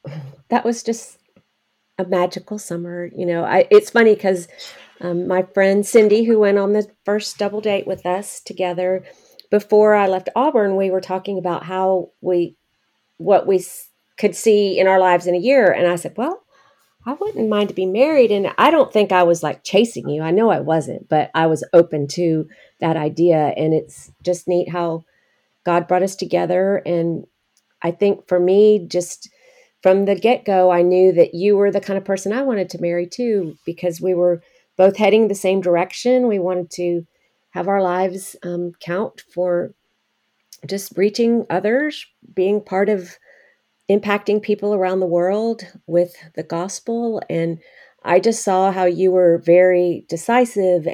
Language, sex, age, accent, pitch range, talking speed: English, female, 40-59, American, 175-210 Hz, 175 wpm